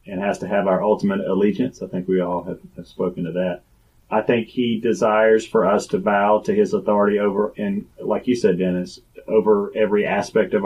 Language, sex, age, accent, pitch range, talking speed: English, male, 40-59, American, 90-120 Hz, 210 wpm